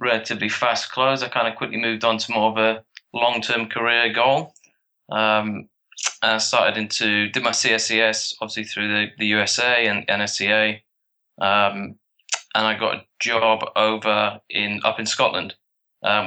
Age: 20-39